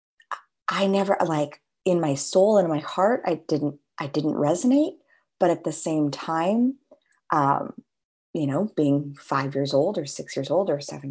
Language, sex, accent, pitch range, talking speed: English, female, American, 145-175 Hz, 175 wpm